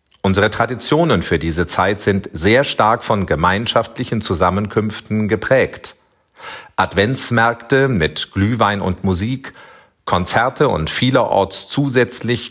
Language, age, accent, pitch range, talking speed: German, 40-59, German, 95-120 Hz, 100 wpm